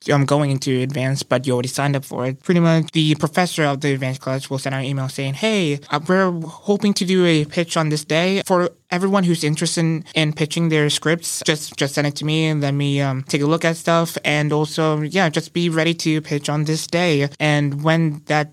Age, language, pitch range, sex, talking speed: 20-39, English, 140-170 Hz, male, 245 wpm